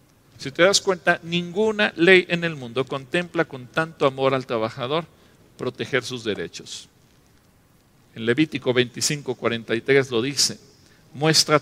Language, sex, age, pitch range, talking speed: English, male, 50-69, 135-170 Hz, 125 wpm